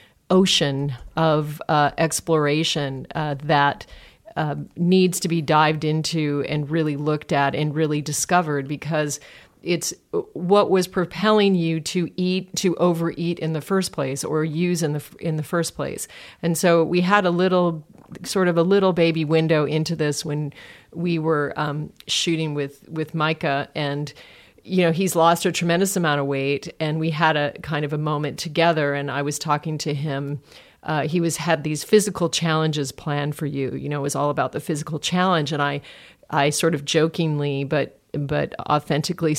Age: 40-59